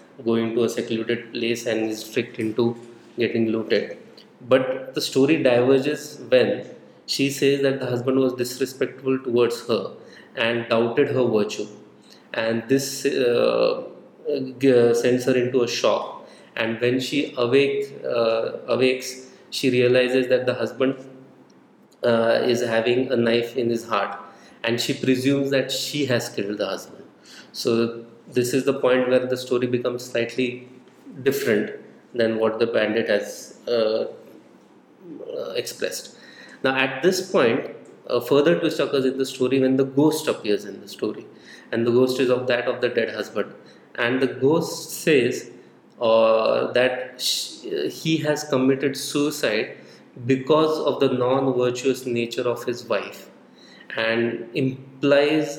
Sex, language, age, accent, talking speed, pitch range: male, English, 20-39, Indian, 140 wpm, 120-135 Hz